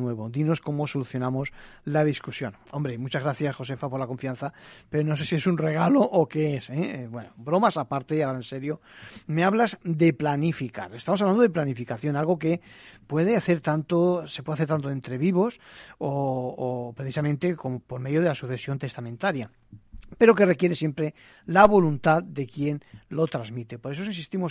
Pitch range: 135-170 Hz